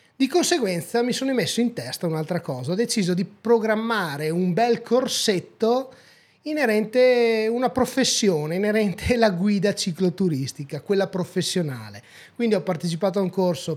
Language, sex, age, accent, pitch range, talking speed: Italian, male, 30-49, native, 160-230 Hz, 140 wpm